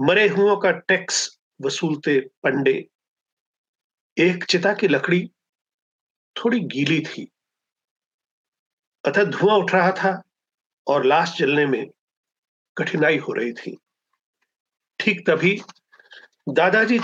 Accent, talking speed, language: native, 100 wpm, Hindi